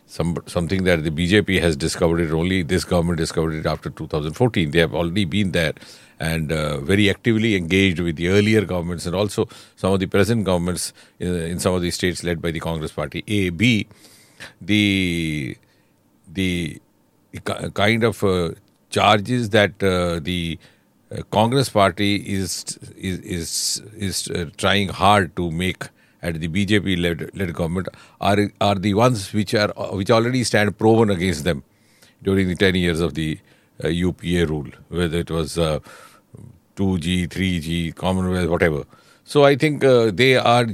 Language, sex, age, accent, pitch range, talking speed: English, male, 50-69, Indian, 85-105 Hz, 160 wpm